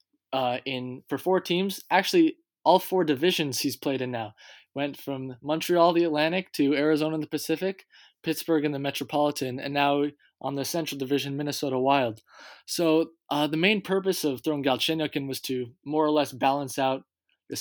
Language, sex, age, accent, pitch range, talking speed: English, male, 20-39, American, 135-160 Hz, 175 wpm